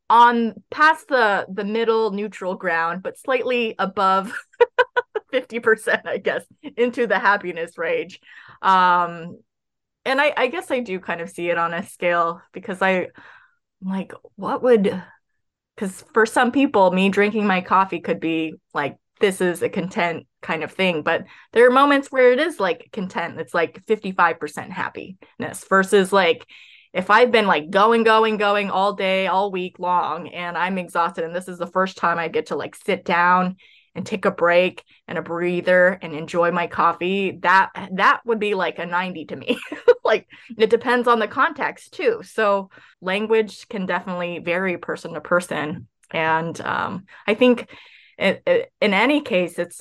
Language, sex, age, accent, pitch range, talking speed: English, female, 20-39, American, 175-235 Hz, 170 wpm